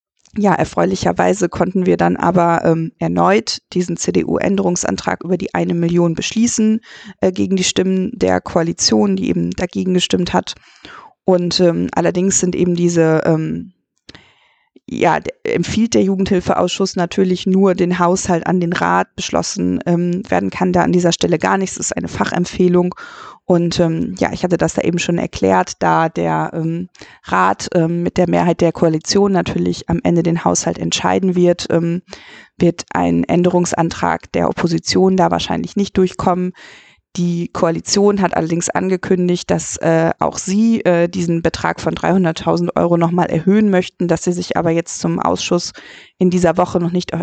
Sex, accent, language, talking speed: female, German, German, 160 wpm